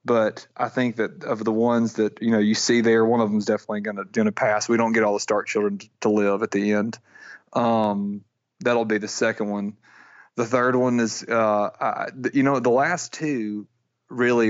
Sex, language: male, English